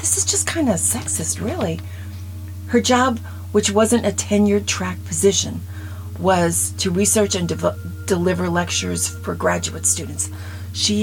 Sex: female